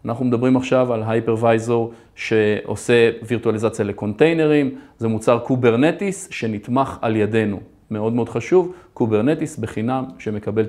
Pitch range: 110-135 Hz